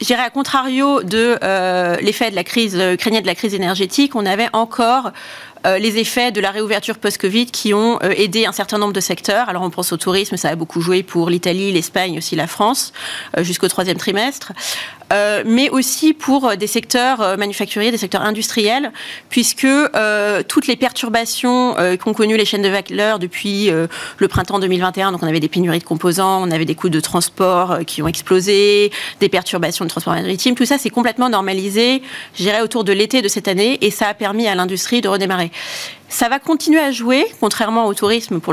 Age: 30-49